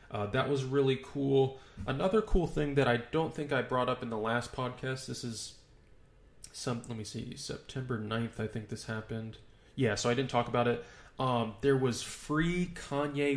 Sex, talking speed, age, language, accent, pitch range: male, 195 wpm, 20-39, English, American, 115-140 Hz